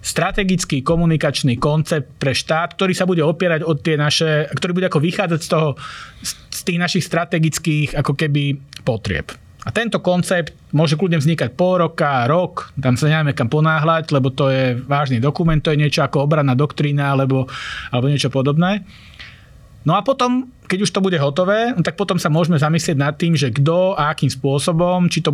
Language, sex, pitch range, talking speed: Slovak, male, 135-165 Hz, 180 wpm